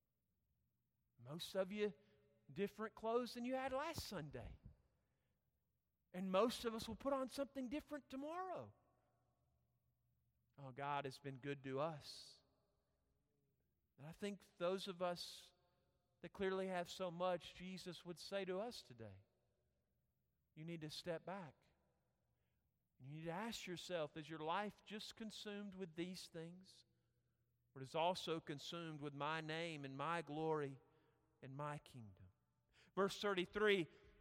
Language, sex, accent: English, male, American